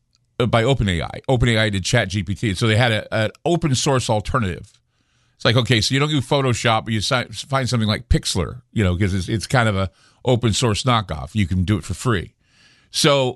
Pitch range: 115-140 Hz